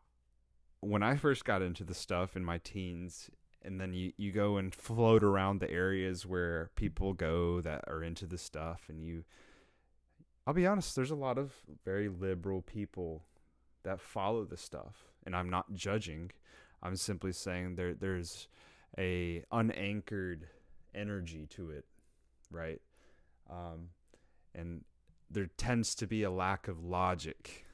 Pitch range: 85-100 Hz